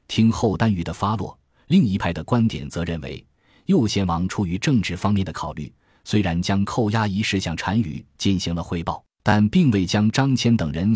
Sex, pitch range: male, 85-115 Hz